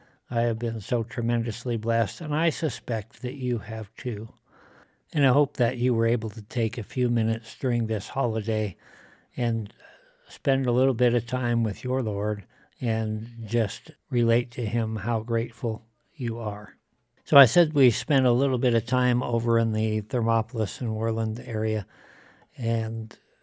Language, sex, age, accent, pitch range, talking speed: English, male, 60-79, American, 115-130 Hz, 165 wpm